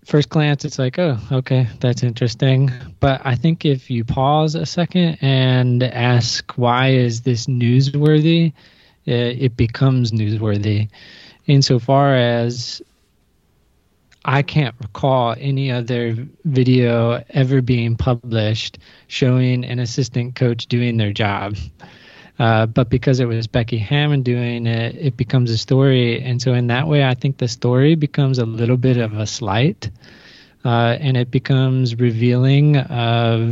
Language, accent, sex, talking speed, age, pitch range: English, American, male, 140 wpm, 20-39, 120-135 Hz